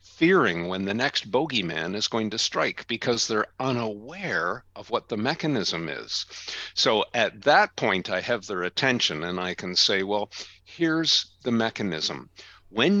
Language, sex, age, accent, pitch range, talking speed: English, male, 50-69, American, 95-120 Hz, 155 wpm